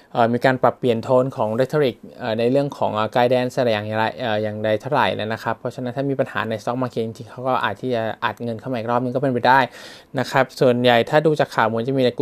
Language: Thai